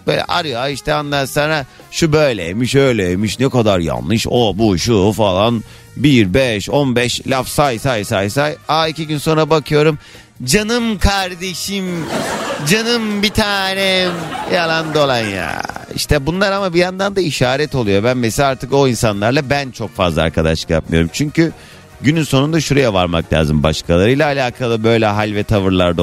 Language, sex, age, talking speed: Turkish, male, 30-49, 150 wpm